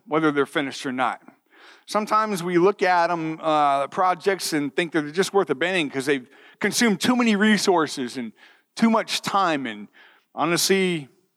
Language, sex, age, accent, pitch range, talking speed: English, male, 50-69, American, 150-220 Hz, 160 wpm